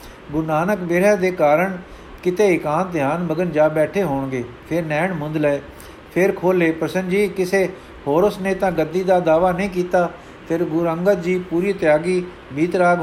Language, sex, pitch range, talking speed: Punjabi, male, 155-185 Hz, 170 wpm